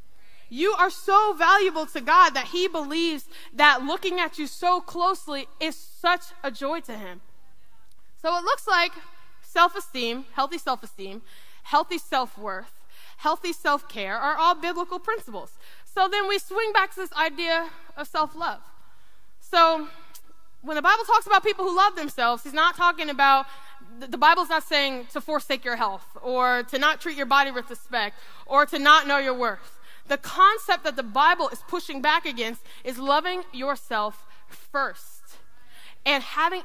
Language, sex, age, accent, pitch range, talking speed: English, female, 20-39, American, 265-360 Hz, 160 wpm